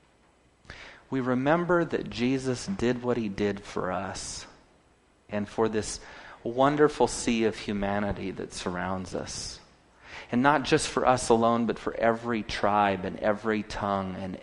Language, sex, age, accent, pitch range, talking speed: English, male, 40-59, American, 95-120 Hz, 140 wpm